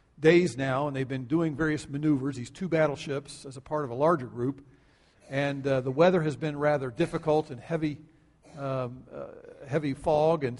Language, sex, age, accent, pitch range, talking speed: English, male, 50-69, American, 140-175 Hz, 185 wpm